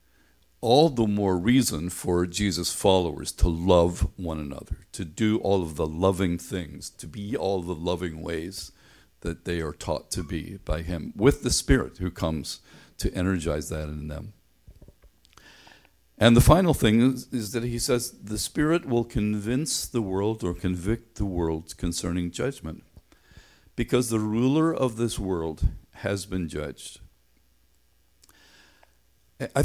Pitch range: 80-110 Hz